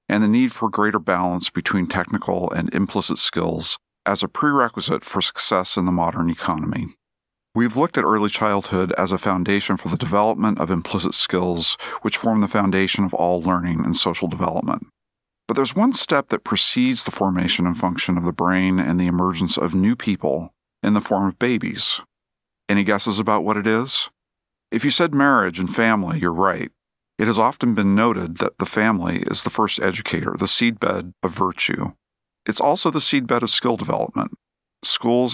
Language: English